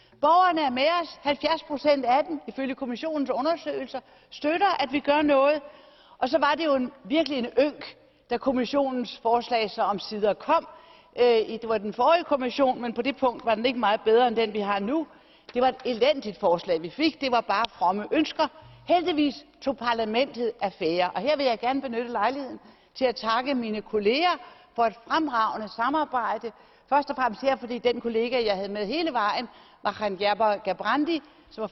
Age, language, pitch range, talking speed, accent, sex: 60-79, Danish, 230-300 Hz, 185 wpm, native, female